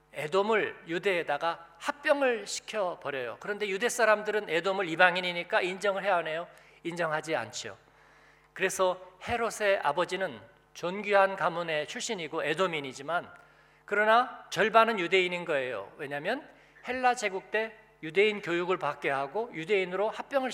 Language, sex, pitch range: Korean, male, 165-210 Hz